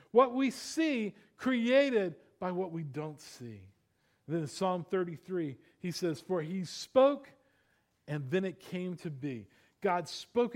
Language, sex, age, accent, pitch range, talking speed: English, male, 50-69, American, 170-215 Hz, 155 wpm